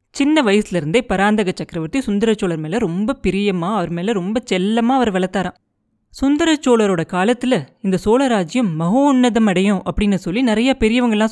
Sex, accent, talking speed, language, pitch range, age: female, native, 125 wpm, Tamil, 180-240 Hz, 20-39